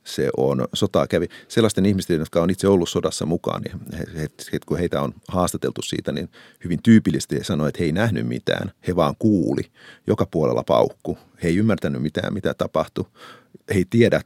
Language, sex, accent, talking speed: Finnish, male, native, 185 wpm